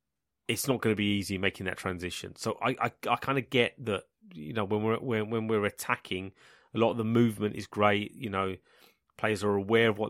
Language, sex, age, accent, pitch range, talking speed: English, male, 30-49, British, 95-115 Hz, 230 wpm